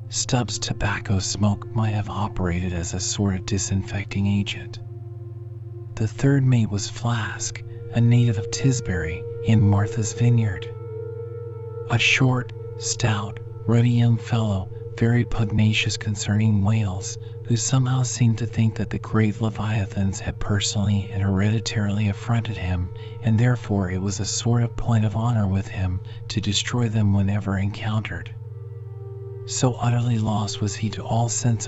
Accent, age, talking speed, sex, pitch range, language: American, 40-59, 140 wpm, male, 105-115 Hz, English